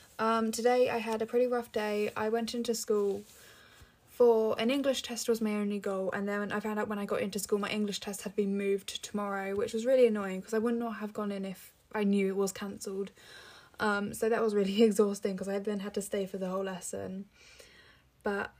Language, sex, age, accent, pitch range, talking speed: English, female, 10-29, British, 195-225 Hz, 230 wpm